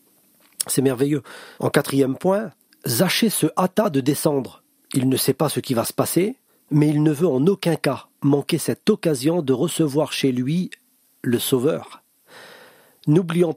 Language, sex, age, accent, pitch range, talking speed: French, male, 40-59, French, 135-190 Hz, 160 wpm